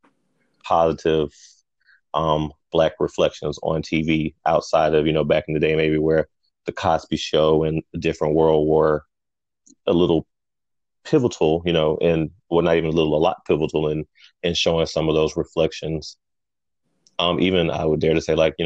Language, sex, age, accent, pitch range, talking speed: English, male, 30-49, American, 80-85 Hz, 175 wpm